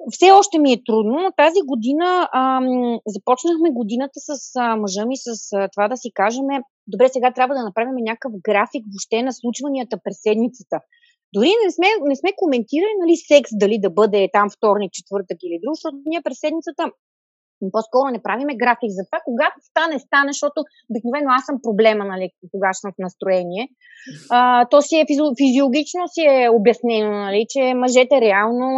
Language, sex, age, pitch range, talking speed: Bulgarian, female, 30-49, 220-295 Hz, 170 wpm